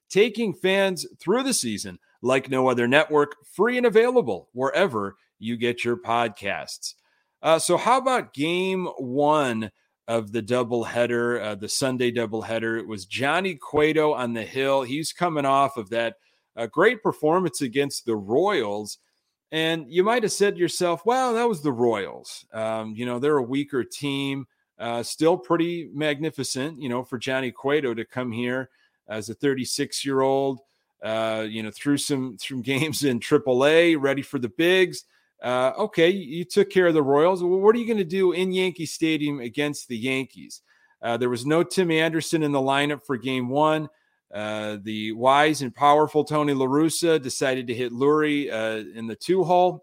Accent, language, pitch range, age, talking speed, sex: American, English, 120-165 Hz, 30-49, 170 wpm, male